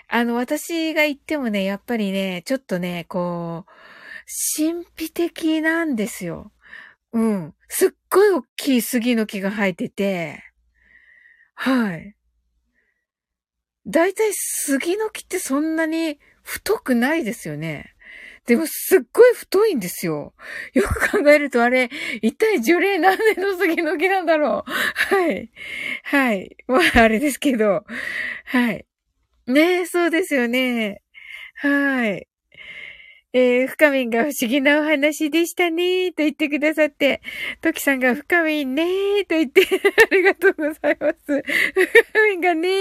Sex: female